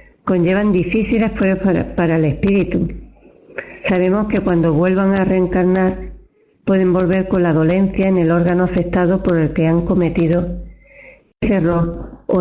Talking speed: 140 wpm